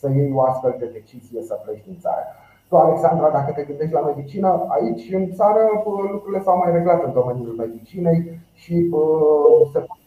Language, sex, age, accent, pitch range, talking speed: Romanian, male, 30-49, native, 125-170 Hz, 180 wpm